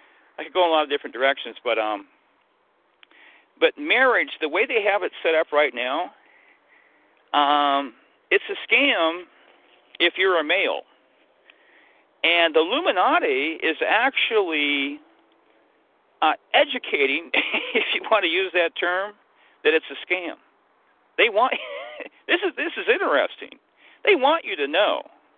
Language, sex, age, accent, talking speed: English, male, 50-69, American, 140 wpm